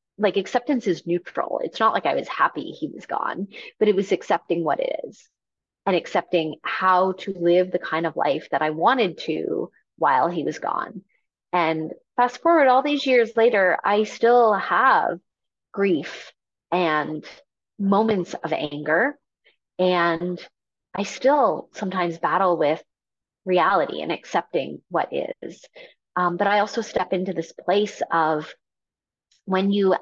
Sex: female